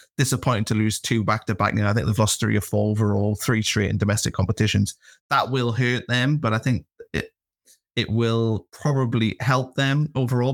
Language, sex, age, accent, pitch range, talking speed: English, male, 20-39, British, 105-120 Hz, 200 wpm